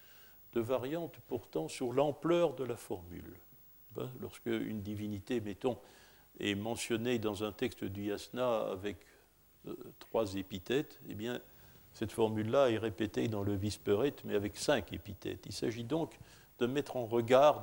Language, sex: French, male